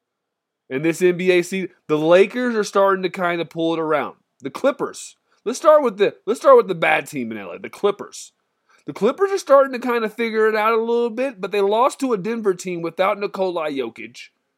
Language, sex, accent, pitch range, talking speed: English, male, American, 145-200 Hz, 220 wpm